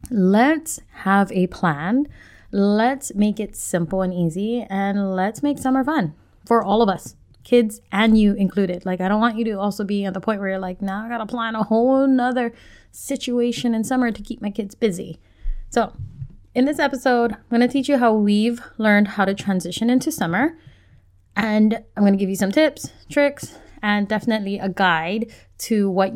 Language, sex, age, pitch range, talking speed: English, female, 20-39, 185-250 Hz, 195 wpm